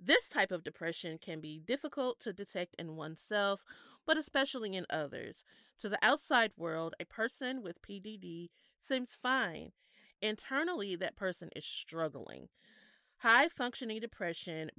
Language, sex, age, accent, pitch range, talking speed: English, female, 30-49, American, 160-230 Hz, 135 wpm